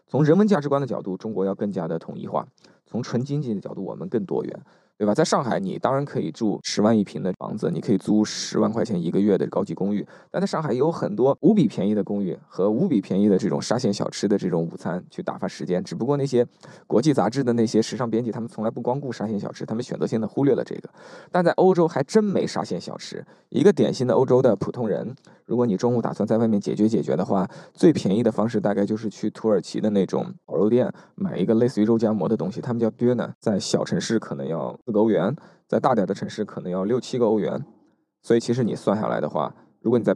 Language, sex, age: Chinese, male, 20-39